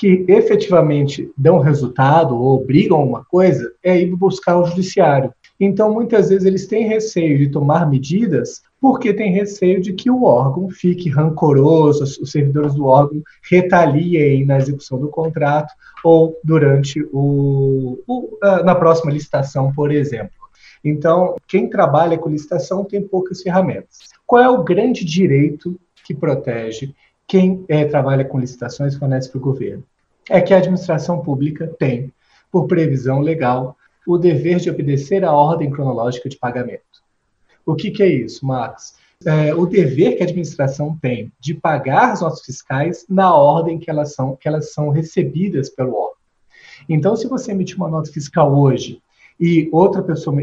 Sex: male